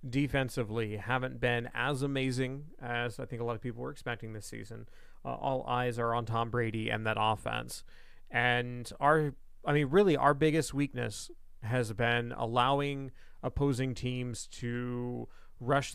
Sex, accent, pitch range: male, American, 120-145 Hz